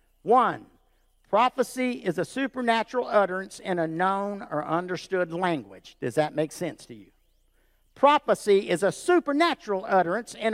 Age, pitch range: 50-69, 190-255 Hz